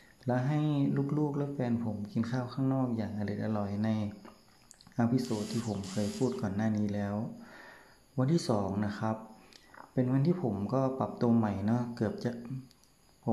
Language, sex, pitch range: Thai, male, 105-125 Hz